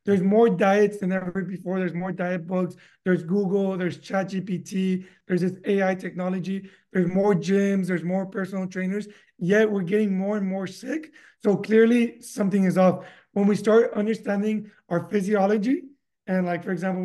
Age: 20-39